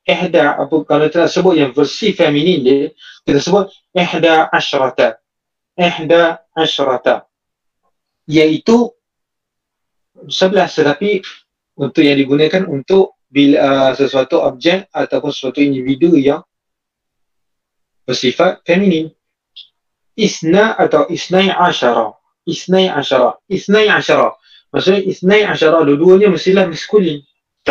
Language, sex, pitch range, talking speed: Malay, male, 140-185 Hz, 95 wpm